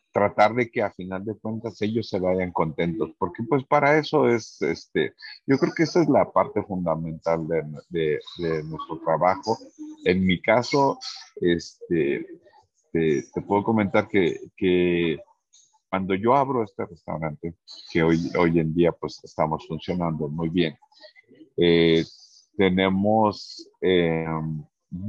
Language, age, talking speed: Spanish, 50-69, 140 wpm